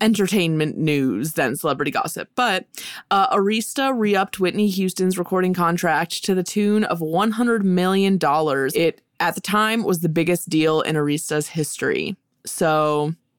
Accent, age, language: American, 20-39, English